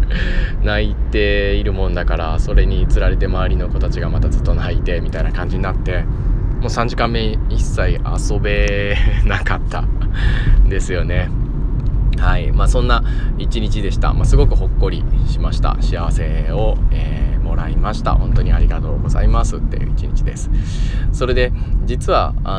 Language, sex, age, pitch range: Japanese, male, 20-39, 80-105 Hz